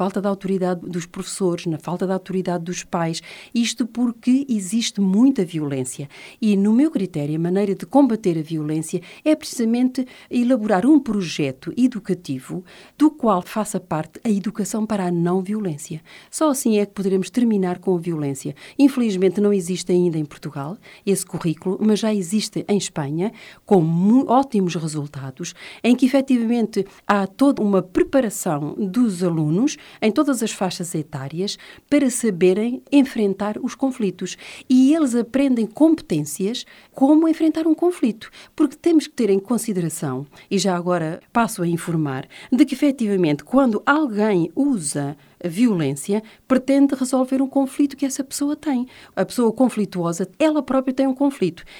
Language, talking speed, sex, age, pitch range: Portuguese, 150 wpm, female, 40-59, 180-260 Hz